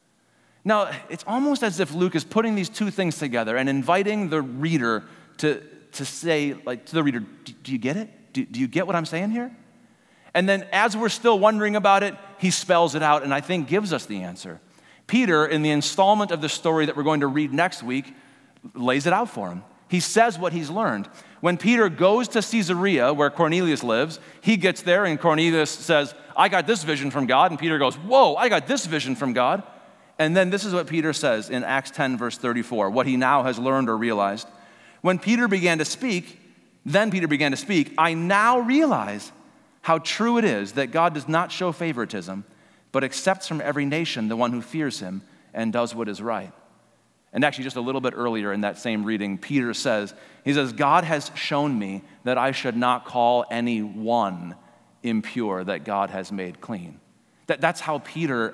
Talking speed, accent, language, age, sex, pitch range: 205 wpm, American, English, 40-59, male, 125-190 Hz